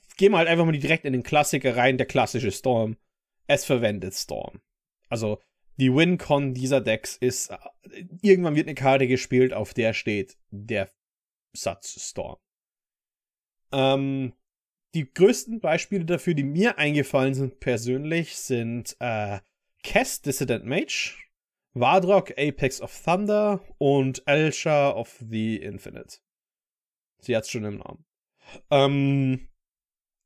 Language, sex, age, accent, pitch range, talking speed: German, male, 30-49, German, 125-175 Hz, 125 wpm